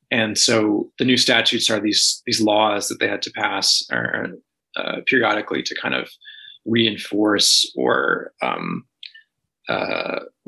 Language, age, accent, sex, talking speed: English, 20-39, American, male, 135 wpm